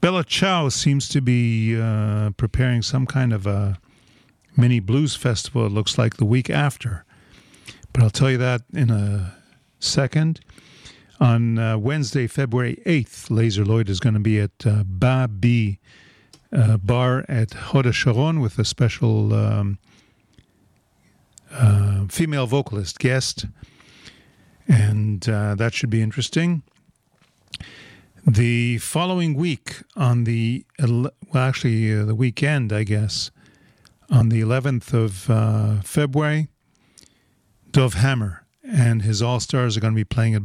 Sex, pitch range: male, 110-135 Hz